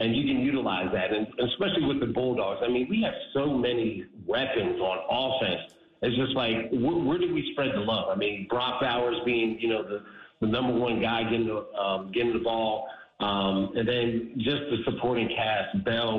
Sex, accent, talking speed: male, American, 205 wpm